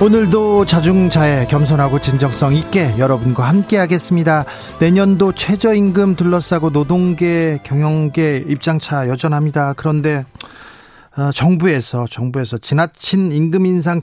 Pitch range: 145-200 Hz